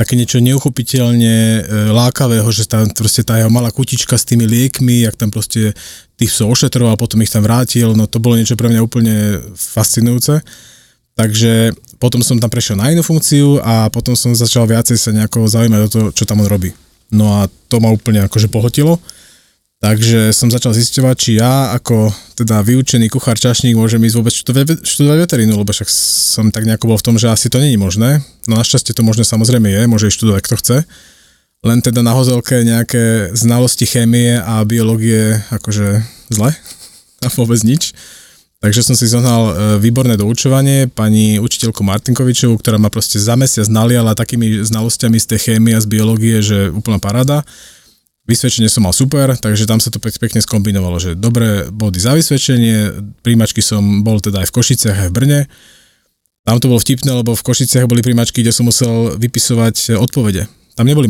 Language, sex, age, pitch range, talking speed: Slovak, male, 20-39, 105-120 Hz, 175 wpm